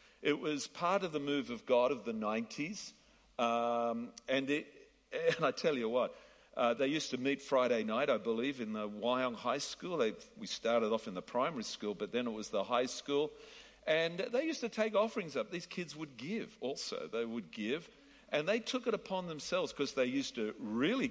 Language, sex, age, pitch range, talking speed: English, male, 50-69, 130-210 Hz, 205 wpm